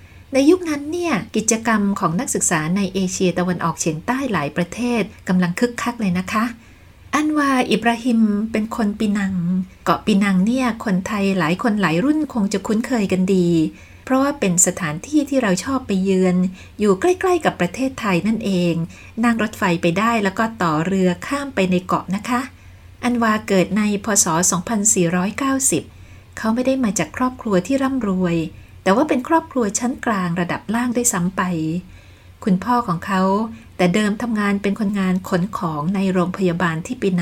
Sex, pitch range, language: female, 175-235 Hz, Thai